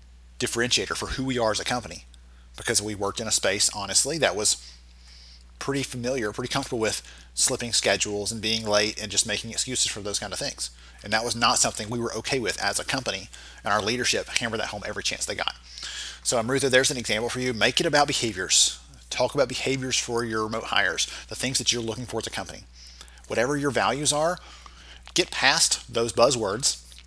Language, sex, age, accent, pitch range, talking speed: English, male, 30-49, American, 85-130 Hz, 210 wpm